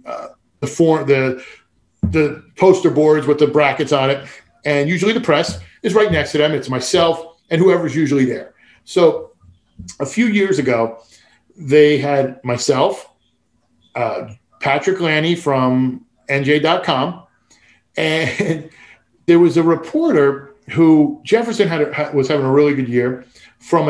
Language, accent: English, American